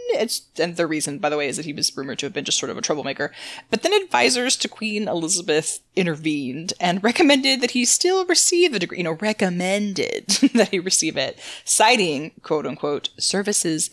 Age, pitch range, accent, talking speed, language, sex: 20-39, 160-230 Hz, American, 190 wpm, English, female